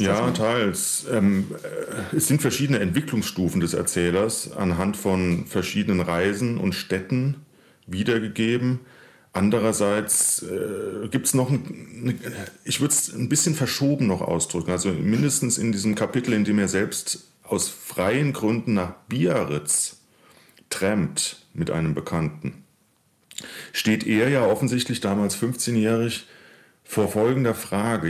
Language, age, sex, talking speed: German, 40-59, male, 120 wpm